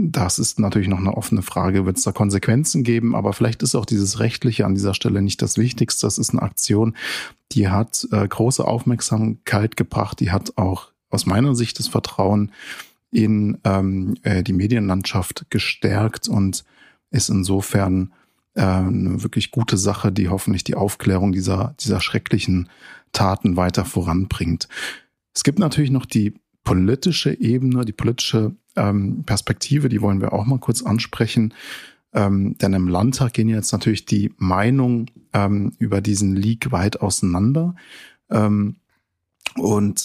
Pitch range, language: 95-115 Hz, German